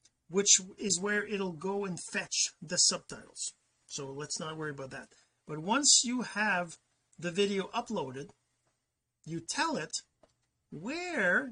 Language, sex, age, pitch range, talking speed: English, male, 40-59, 165-225 Hz, 135 wpm